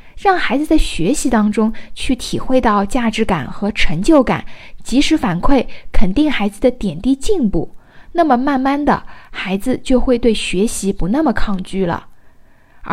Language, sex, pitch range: Chinese, female, 210-275 Hz